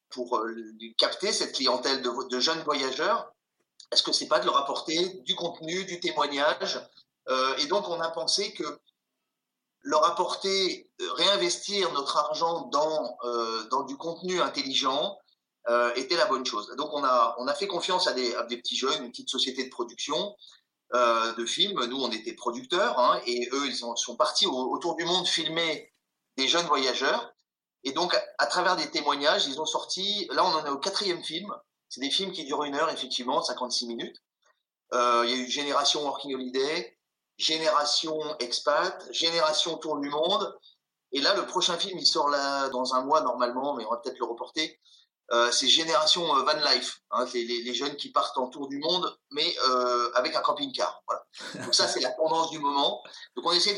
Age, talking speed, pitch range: 30-49, 195 wpm, 125-170 Hz